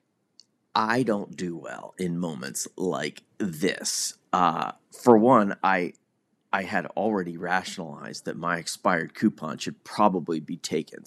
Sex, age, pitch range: male, 30-49, 90-130 Hz